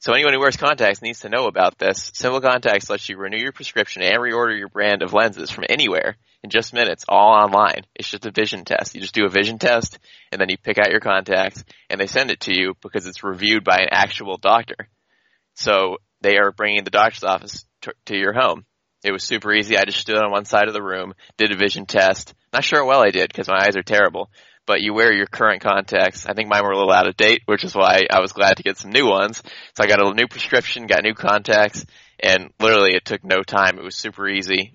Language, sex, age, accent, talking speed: English, male, 20-39, American, 250 wpm